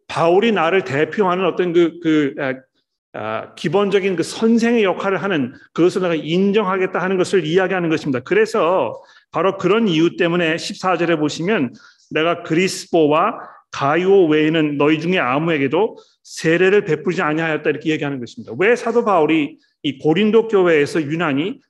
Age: 40-59